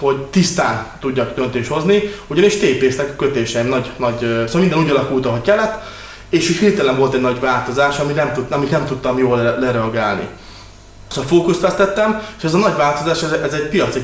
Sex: male